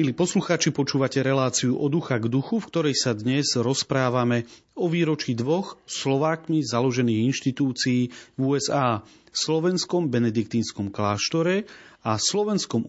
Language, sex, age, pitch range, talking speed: Slovak, male, 40-59, 115-150 Hz, 120 wpm